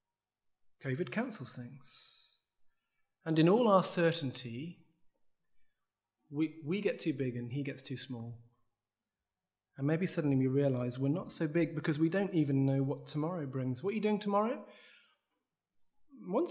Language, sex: English, male